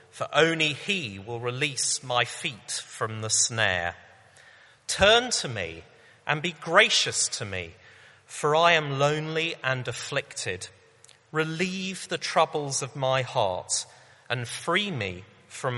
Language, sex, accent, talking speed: English, male, British, 130 wpm